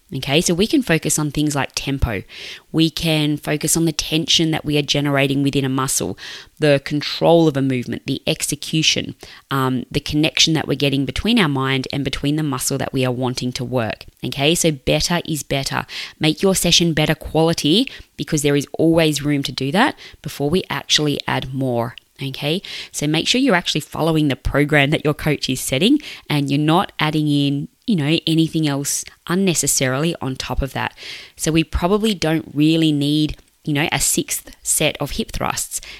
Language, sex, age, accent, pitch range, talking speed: English, female, 20-39, Australian, 140-170 Hz, 190 wpm